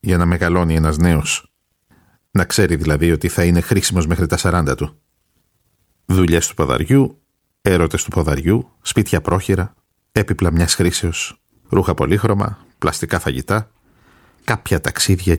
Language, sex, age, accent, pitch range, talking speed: Greek, male, 50-69, native, 85-105 Hz, 130 wpm